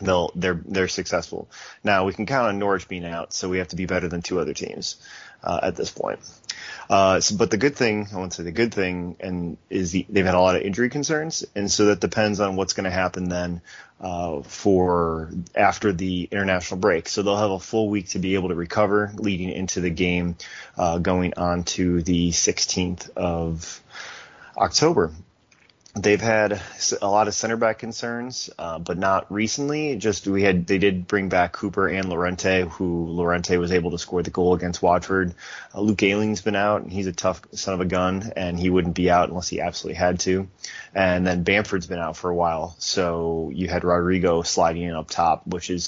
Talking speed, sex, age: 210 wpm, male, 30-49